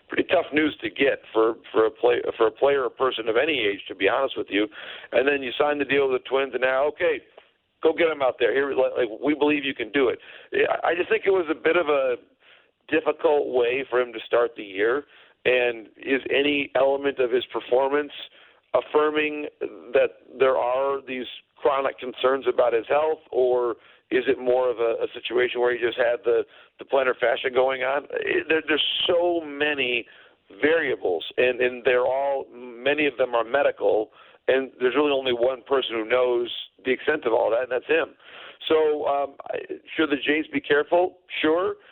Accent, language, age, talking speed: American, English, 50-69, 200 wpm